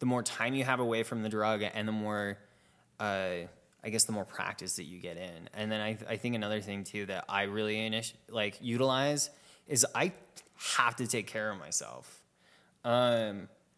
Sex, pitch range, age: male, 105-125 Hz, 20-39